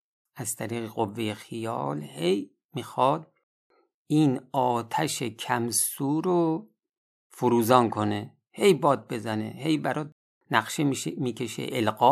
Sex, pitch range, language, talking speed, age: male, 105-135 Hz, Persian, 100 wpm, 50-69